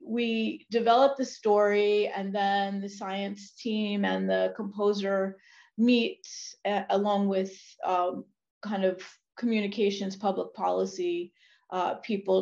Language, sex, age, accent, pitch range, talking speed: English, female, 30-49, American, 185-205 Hz, 110 wpm